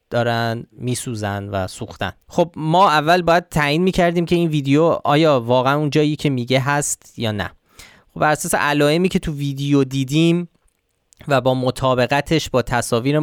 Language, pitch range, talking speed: Persian, 120-160 Hz, 155 wpm